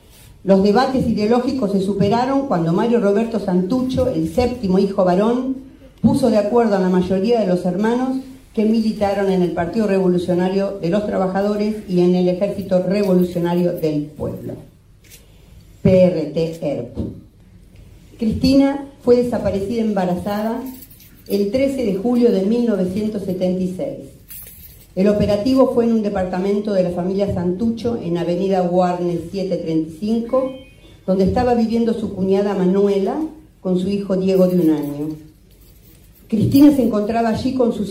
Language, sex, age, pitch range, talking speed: Spanish, female, 40-59, 175-230 Hz, 130 wpm